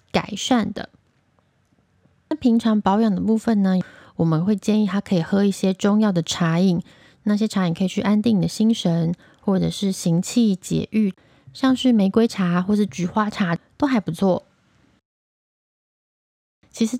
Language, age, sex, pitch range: Chinese, 20-39, female, 180-220 Hz